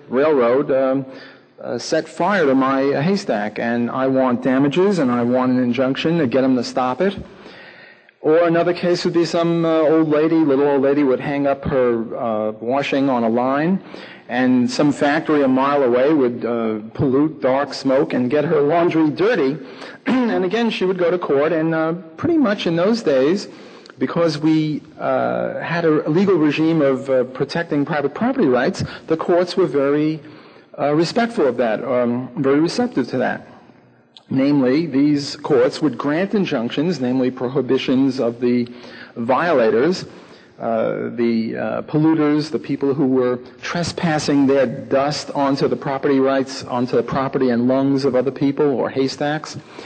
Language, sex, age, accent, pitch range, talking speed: English, male, 40-59, American, 125-170 Hz, 165 wpm